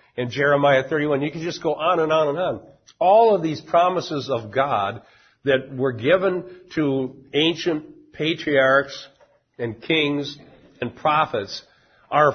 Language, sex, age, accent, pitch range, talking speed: English, male, 60-79, American, 120-155 Hz, 140 wpm